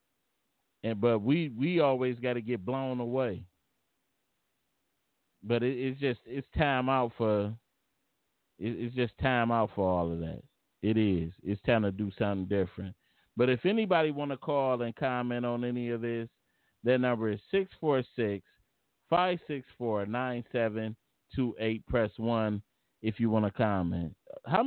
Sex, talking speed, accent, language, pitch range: male, 165 wpm, American, English, 110-135 Hz